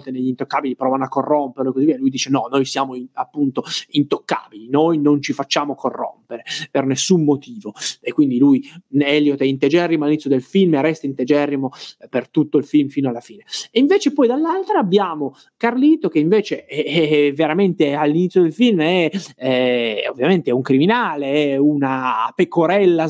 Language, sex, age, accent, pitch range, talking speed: Italian, male, 20-39, native, 135-175 Hz, 170 wpm